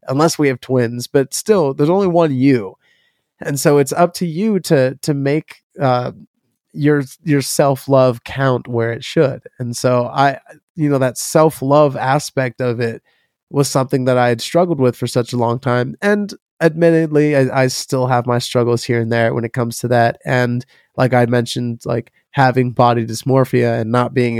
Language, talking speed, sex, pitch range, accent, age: English, 190 wpm, male, 120-140 Hz, American, 20-39